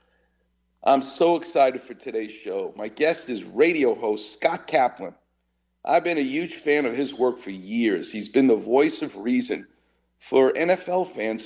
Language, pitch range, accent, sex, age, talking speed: English, 105-175 Hz, American, male, 50-69, 170 wpm